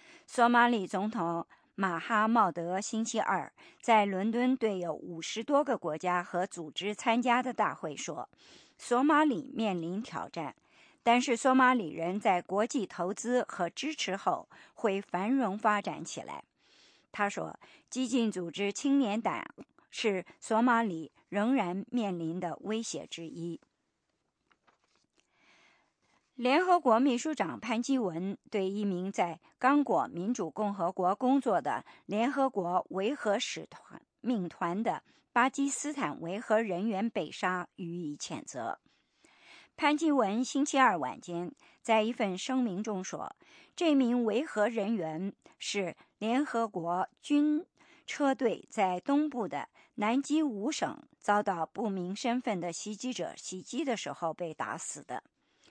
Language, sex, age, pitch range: English, male, 50-69, 185-260 Hz